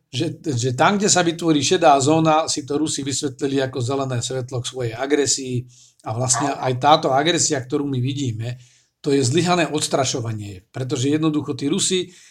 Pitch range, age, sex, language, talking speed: 125-145 Hz, 50-69, male, Slovak, 165 wpm